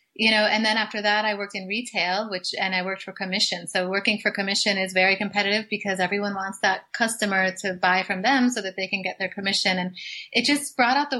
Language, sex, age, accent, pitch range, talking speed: English, female, 30-49, American, 190-220 Hz, 240 wpm